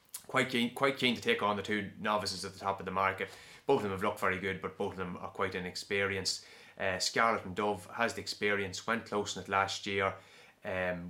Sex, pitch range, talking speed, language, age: male, 95-105 Hz, 240 wpm, English, 20-39